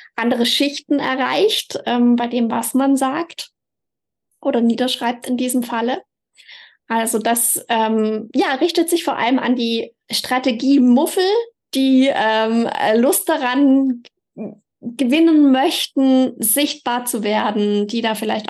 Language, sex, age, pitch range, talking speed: German, female, 20-39, 220-270 Hz, 120 wpm